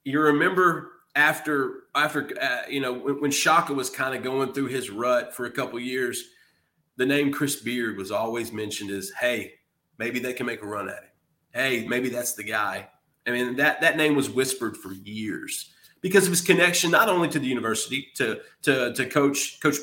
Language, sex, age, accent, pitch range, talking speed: English, male, 30-49, American, 125-185 Hz, 205 wpm